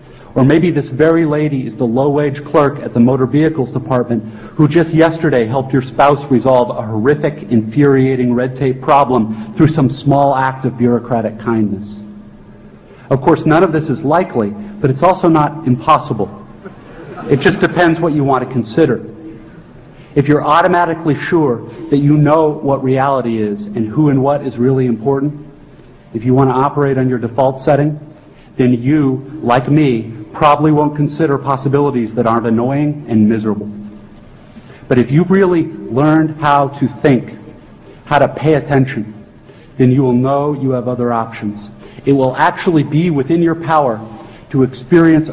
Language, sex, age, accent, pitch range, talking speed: English, male, 40-59, American, 125-150 Hz, 160 wpm